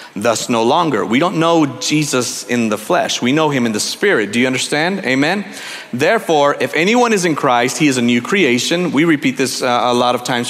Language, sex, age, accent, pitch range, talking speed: English, male, 40-59, American, 135-190 Hz, 225 wpm